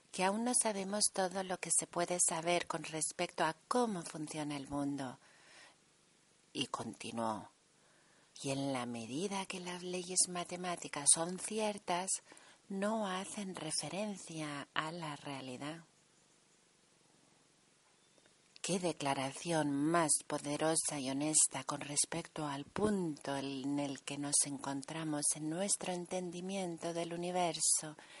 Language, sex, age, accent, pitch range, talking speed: Spanish, female, 40-59, Spanish, 145-185 Hz, 115 wpm